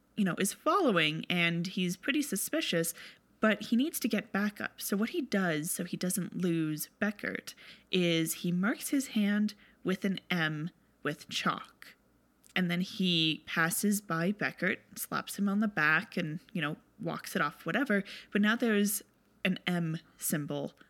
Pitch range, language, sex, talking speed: 175-220 Hz, English, female, 165 wpm